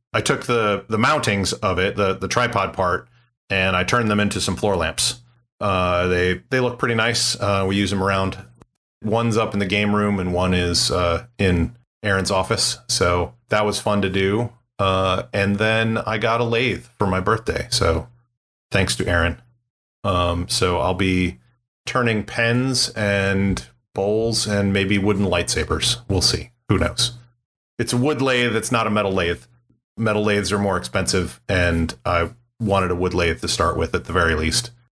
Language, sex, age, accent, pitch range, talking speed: English, male, 30-49, American, 95-120 Hz, 180 wpm